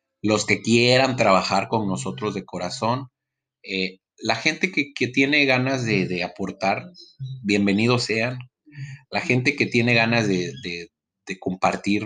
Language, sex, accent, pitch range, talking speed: Spanish, male, Mexican, 95-130 Hz, 145 wpm